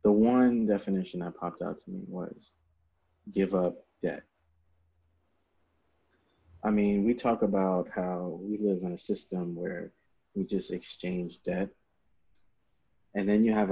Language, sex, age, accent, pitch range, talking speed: English, male, 30-49, American, 85-100 Hz, 140 wpm